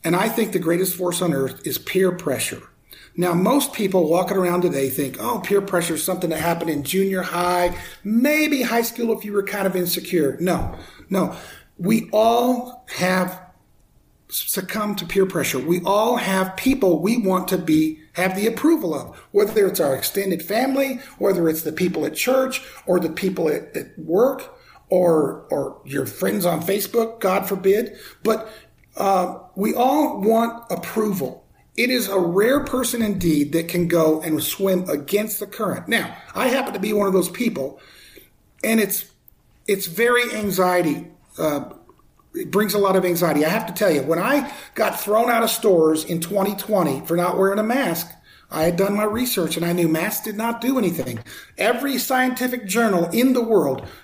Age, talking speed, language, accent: 50-69, 180 wpm, English, American